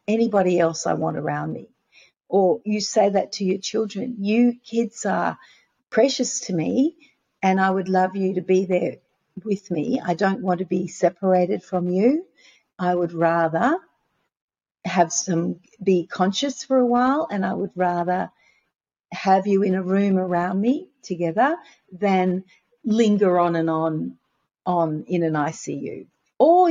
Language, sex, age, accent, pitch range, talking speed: English, female, 50-69, Australian, 180-225 Hz, 155 wpm